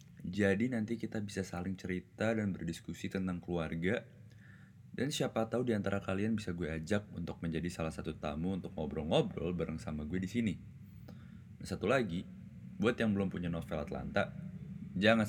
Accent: native